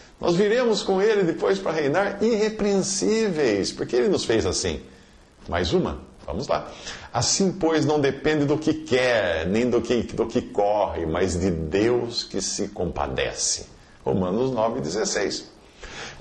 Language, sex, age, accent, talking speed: Portuguese, male, 50-69, Brazilian, 135 wpm